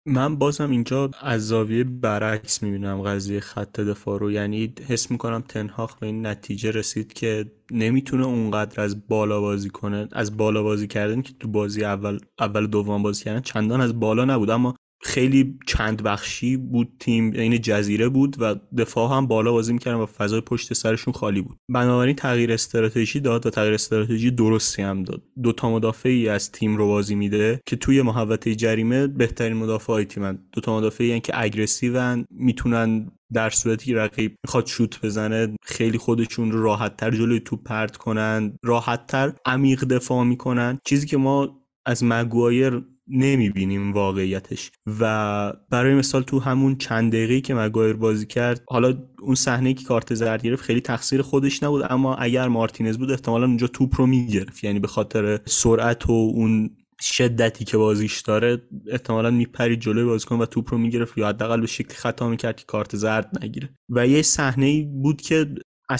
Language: Persian